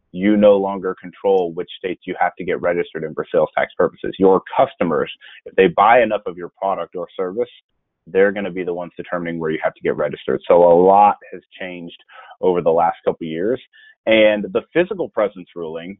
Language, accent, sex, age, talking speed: English, American, male, 30-49, 205 wpm